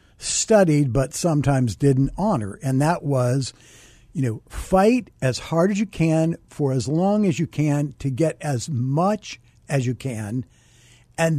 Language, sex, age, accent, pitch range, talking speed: English, male, 60-79, American, 125-170 Hz, 160 wpm